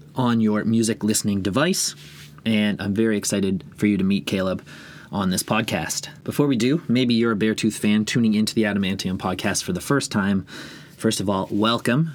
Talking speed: 190 wpm